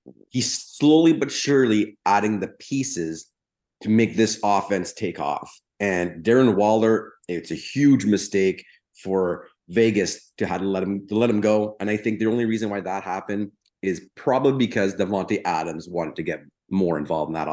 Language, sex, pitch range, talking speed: English, male, 100-125 Hz, 180 wpm